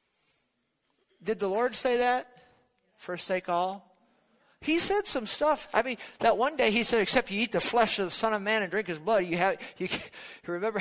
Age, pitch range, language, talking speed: 50-69, 135-195 Hz, English, 200 wpm